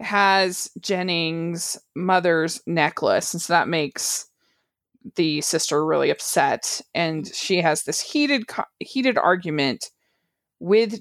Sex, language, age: female, English, 20-39